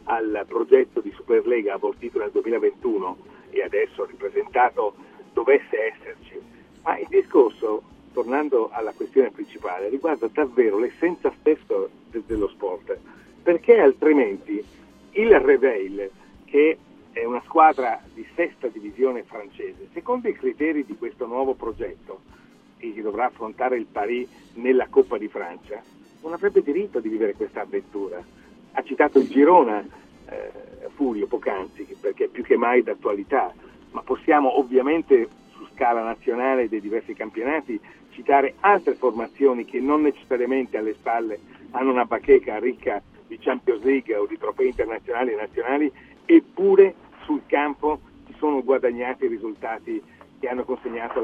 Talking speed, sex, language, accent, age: 135 wpm, male, Italian, native, 50-69